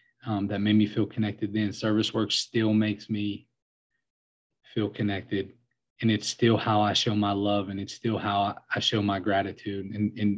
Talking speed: 185 wpm